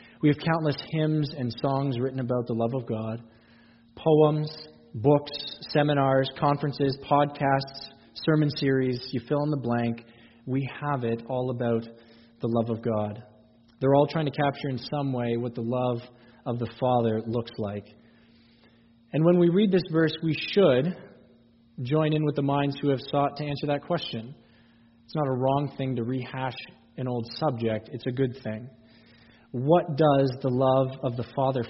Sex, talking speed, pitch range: male, 170 wpm, 115-145 Hz